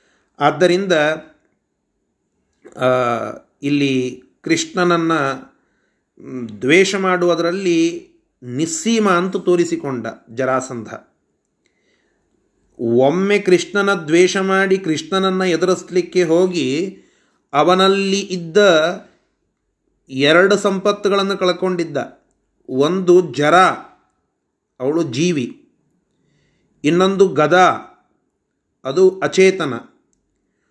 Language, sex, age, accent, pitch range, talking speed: Kannada, male, 30-49, native, 155-205 Hz, 55 wpm